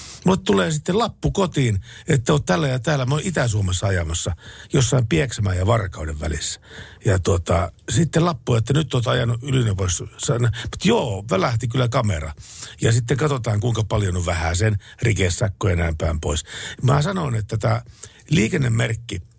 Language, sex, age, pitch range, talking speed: Finnish, male, 60-79, 95-140 Hz, 155 wpm